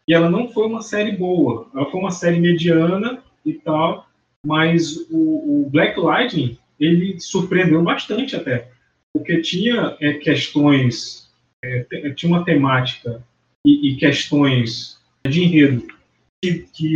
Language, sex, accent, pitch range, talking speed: Portuguese, male, Brazilian, 130-175 Hz, 140 wpm